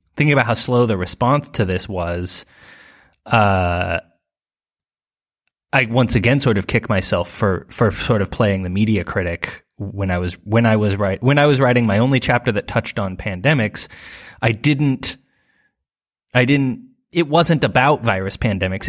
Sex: male